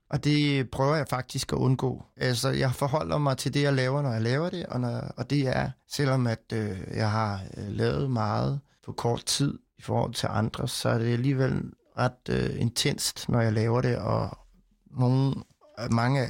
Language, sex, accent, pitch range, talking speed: Danish, male, native, 115-135 Hz, 195 wpm